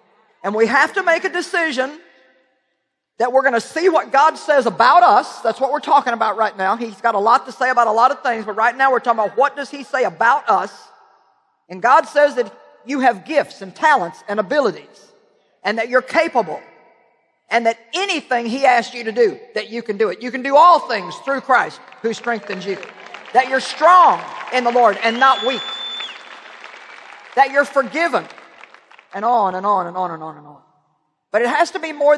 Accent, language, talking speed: American, English, 210 wpm